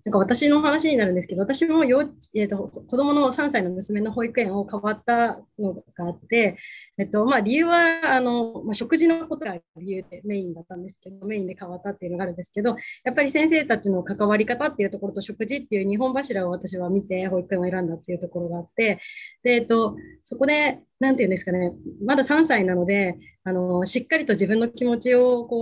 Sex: female